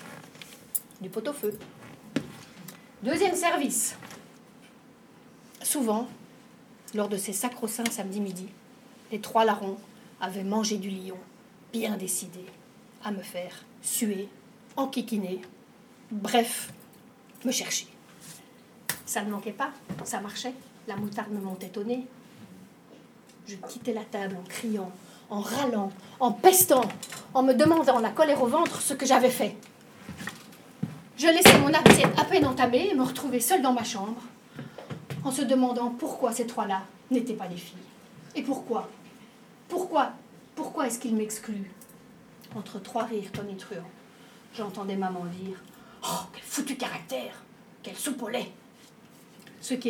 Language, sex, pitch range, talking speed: French, female, 205-250 Hz, 130 wpm